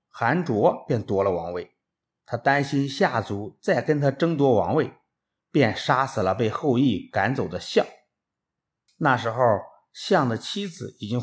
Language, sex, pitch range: Chinese, male, 115-160 Hz